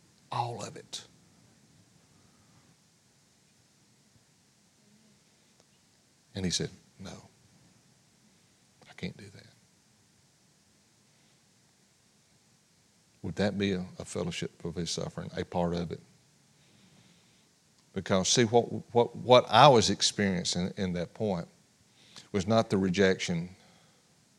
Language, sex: English, male